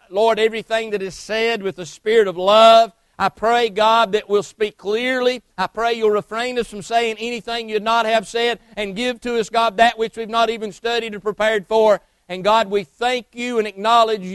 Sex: male